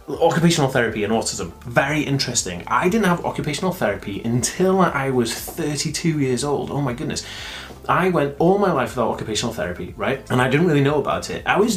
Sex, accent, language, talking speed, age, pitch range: male, British, English, 195 wpm, 30-49, 115-155 Hz